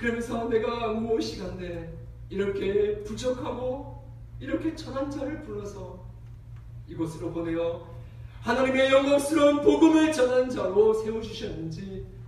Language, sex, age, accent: Korean, male, 40-59, native